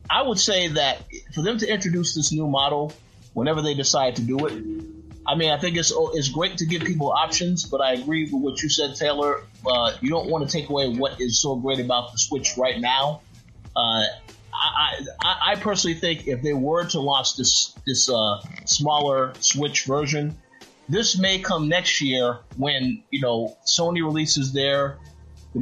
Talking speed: 190 wpm